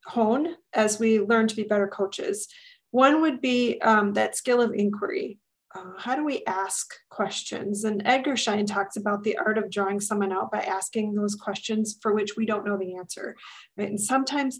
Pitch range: 205-255 Hz